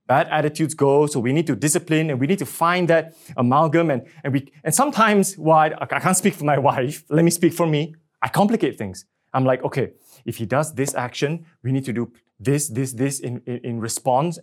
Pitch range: 125-160 Hz